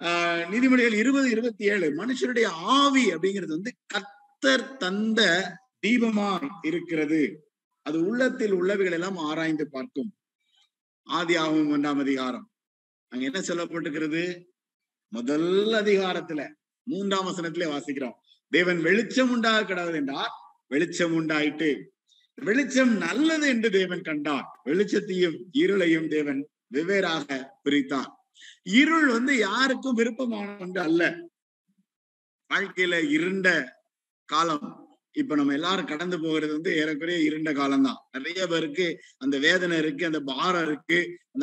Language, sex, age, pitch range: Tamil, male, 50-69, 170-255 Hz